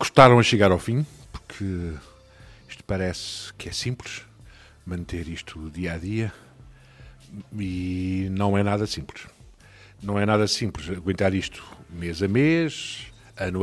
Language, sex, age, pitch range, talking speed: Portuguese, male, 50-69, 95-130 Hz, 135 wpm